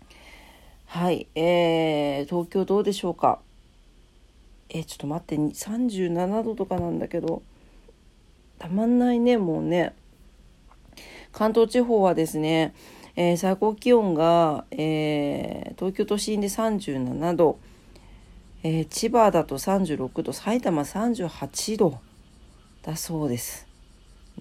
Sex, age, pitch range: female, 40-59, 150-215 Hz